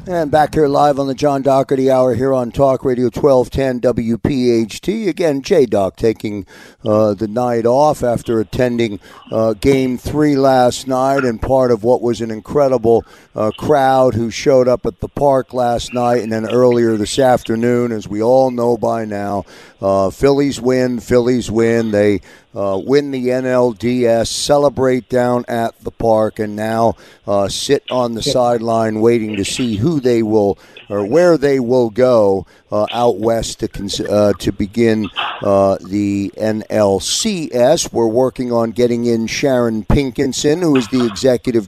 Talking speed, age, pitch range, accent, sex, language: 160 wpm, 50-69, 115-135 Hz, American, male, English